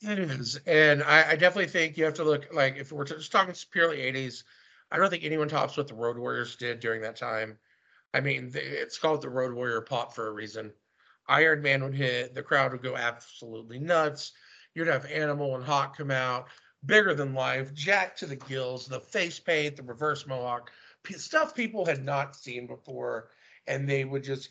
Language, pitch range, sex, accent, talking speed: English, 125-155 Hz, male, American, 205 wpm